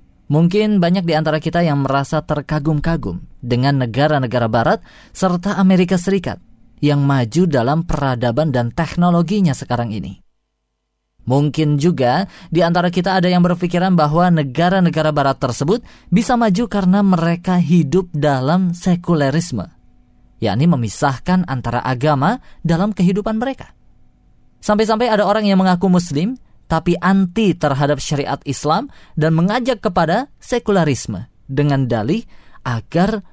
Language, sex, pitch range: Indonesian, female, 140-195 Hz